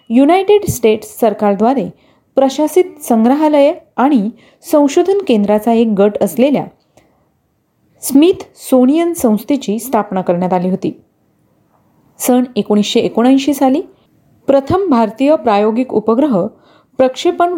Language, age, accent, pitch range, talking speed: Marathi, 40-59, native, 215-285 Hz, 90 wpm